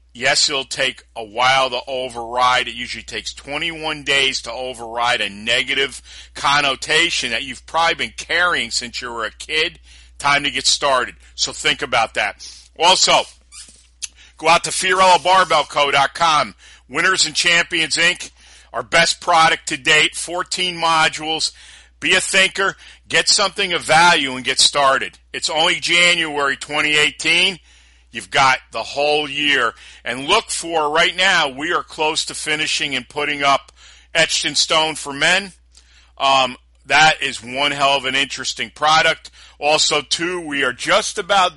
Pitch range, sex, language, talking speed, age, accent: 130-160 Hz, male, English, 150 wpm, 50-69, American